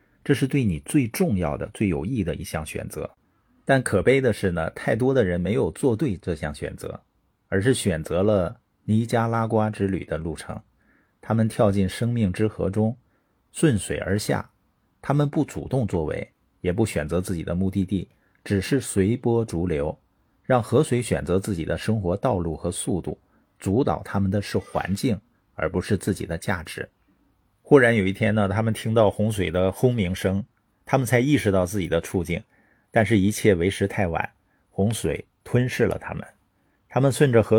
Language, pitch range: Chinese, 95-115 Hz